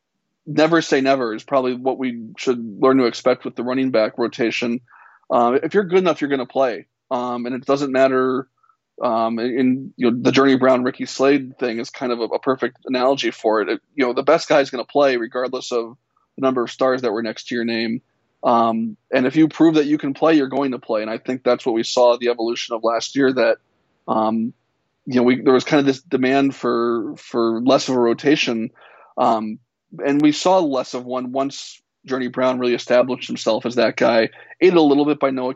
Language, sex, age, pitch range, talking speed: English, male, 20-39, 120-140 Hz, 225 wpm